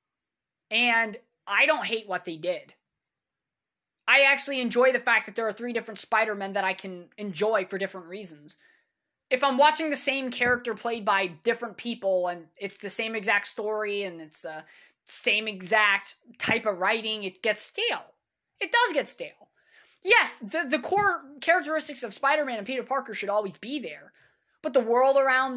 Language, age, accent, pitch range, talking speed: English, 20-39, American, 200-280 Hz, 175 wpm